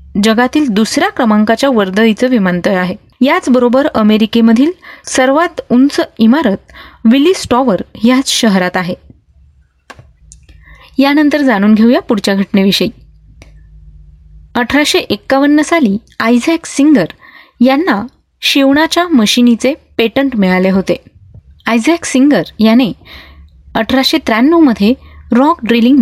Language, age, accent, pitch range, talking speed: Marathi, 20-39, native, 200-270 Hz, 90 wpm